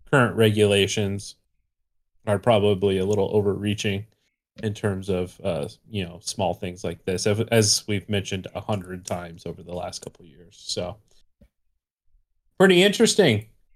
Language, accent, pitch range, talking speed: English, American, 105-130 Hz, 140 wpm